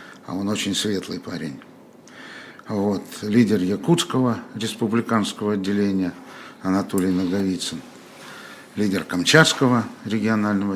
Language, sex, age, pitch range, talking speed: Russian, male, 60-79, 95-120 Hz, 80 wpm